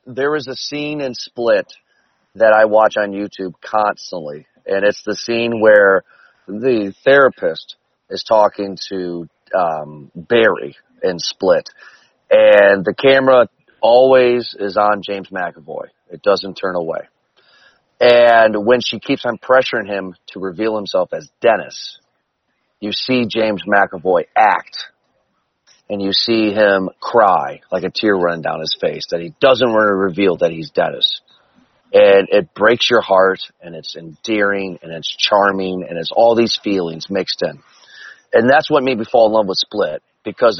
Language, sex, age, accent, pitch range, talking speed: English, male, 30-49, American, 100-130 Hz, 155 wpm